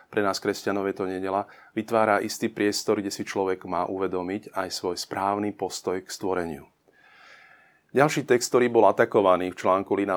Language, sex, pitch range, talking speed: Slovak, male, 95-110 Hz, 160 wpm